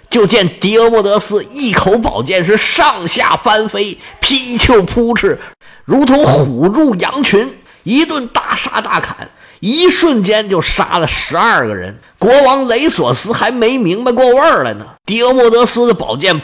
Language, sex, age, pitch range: Chinese, male, 50-69, 175-250 Hz